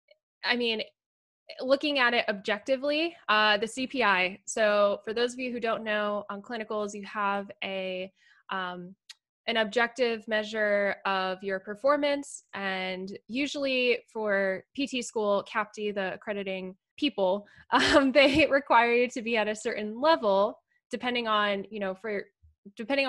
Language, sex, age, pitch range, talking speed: English, female, 10-29, 200-245 Hz, 140 wpm